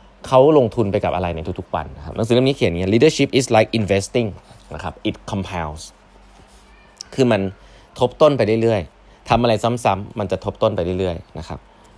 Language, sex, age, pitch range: Thai, male, 20-39, 90-120 Hz